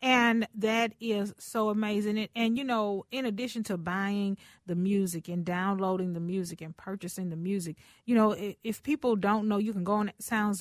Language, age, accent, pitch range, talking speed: English, 40-59, American, 195-235 Hz, 190 wpm